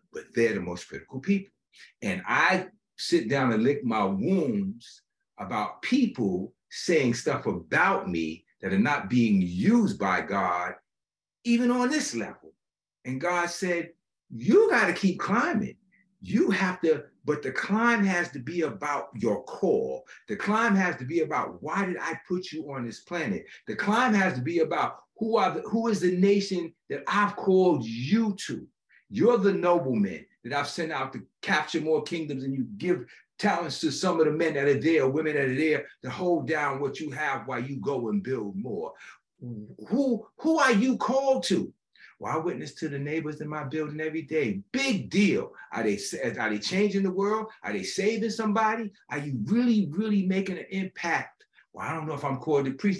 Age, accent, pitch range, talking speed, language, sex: 60-79, American, 150-210 Hz, 190 wpm, English, male